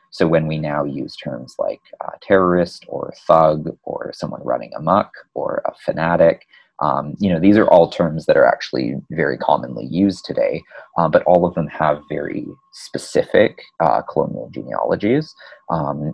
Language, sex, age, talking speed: English, male, 30-49, 165 wpm